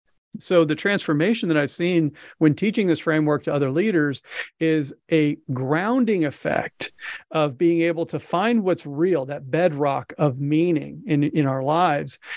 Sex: male